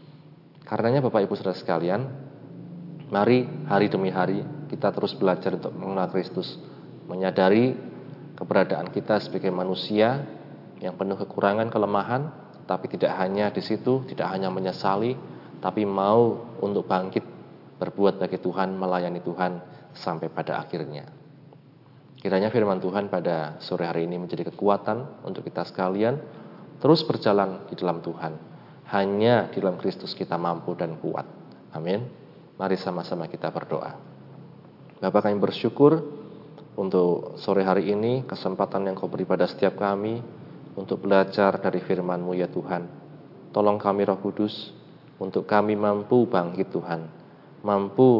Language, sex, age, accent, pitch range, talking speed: Indonesian, male, 20-39, native, 95-120 Hz, 130 wpm